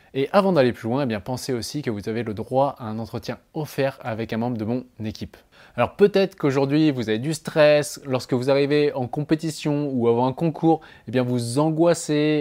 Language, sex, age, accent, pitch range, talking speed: French, male, 20-39, French, 120-155 Hz, 195 wpm